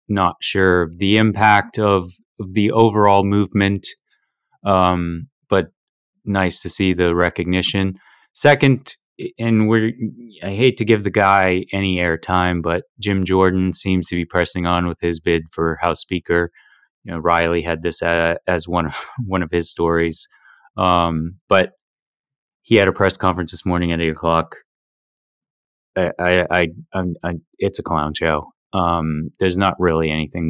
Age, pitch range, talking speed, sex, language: 20-39, 85-105 Hz, 160 wpm, male, English